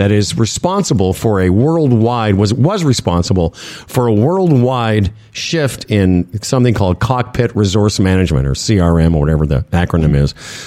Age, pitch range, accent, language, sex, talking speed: 50-69, 100-140 Hz, American, English, male, 145 wpm